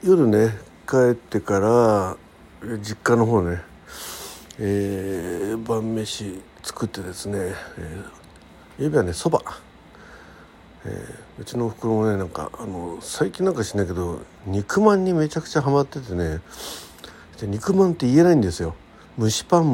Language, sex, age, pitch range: Japanese, male, 60-79, 90-140 Hz